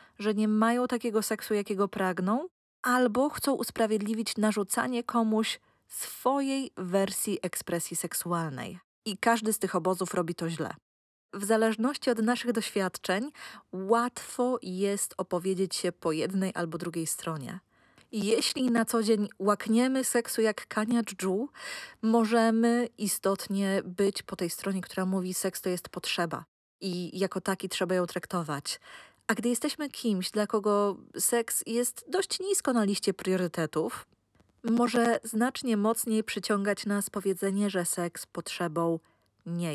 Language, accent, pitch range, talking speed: Polish, native, 185-230 Hz, 135 wpm